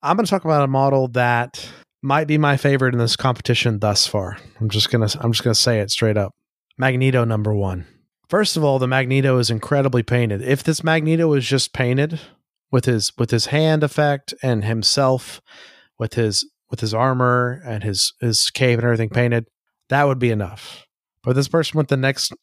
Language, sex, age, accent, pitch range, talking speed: English, male, 30-49, American, 115-140 Hz, 195 wpm